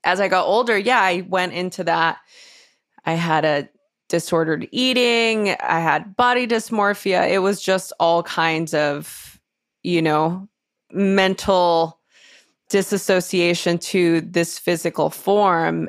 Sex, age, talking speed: female, 20-39, 120 wpm